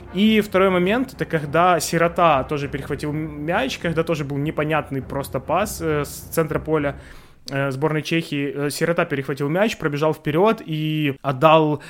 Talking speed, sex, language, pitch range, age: 135 wpm, male, Ukrainian, 140-175 Hz, 20-39